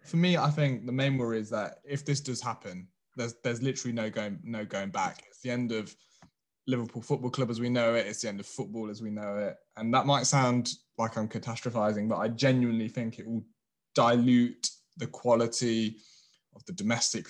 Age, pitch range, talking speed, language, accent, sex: 20-39, 115-135 Hz, 210 wpm, English, British, male